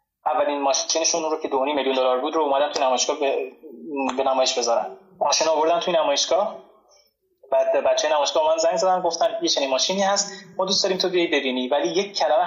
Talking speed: 200 wpm